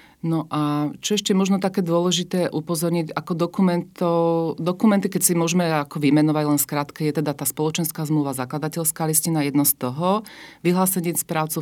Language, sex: Slovak, female